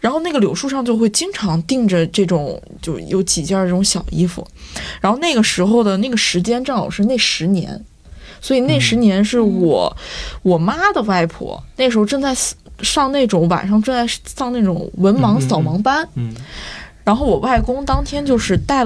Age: 20-39